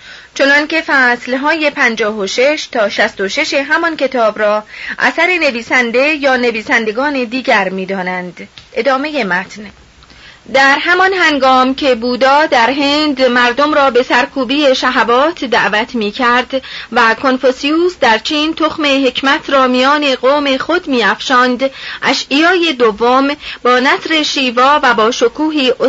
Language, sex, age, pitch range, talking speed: Persian, female, 30-49, 235-290 Hz, 120 wpm